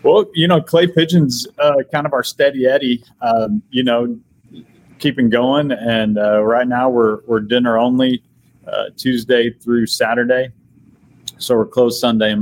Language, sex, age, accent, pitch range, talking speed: English, male, 30-49, American, 105-125 Hz, 160 wpm